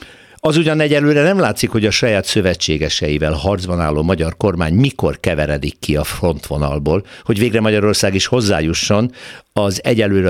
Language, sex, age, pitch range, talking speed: Hungarian, male, 60-79, 80-120 Hz, 145 wpm